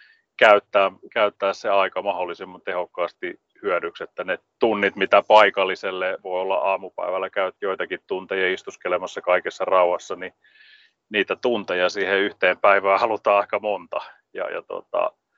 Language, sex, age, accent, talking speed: Finnish, male, 30-49, native, 130 wpm